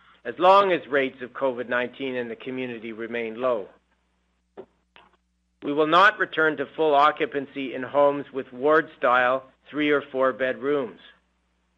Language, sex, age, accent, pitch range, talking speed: English, male, 50-69, American, 115-145 Hz, 140 wpm